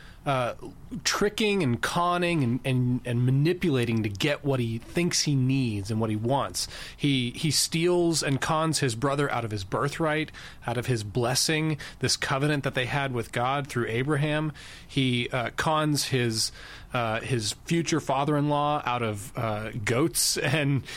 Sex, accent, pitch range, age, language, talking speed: male, American, 120-155 Hz, 30-49, English, 160 wpm